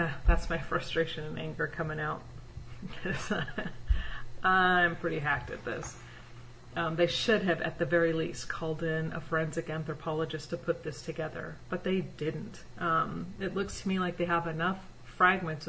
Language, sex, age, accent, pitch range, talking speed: English, female, 40-59, American, 155-190 Hz, 160 wpm